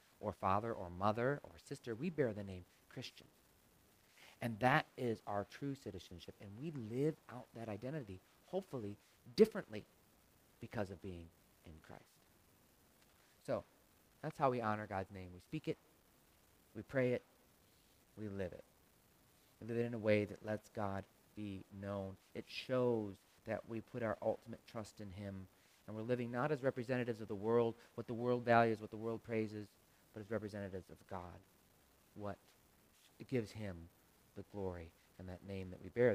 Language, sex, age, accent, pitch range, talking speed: English, male, 40-59, American, 90-120 Hz, 165 wpm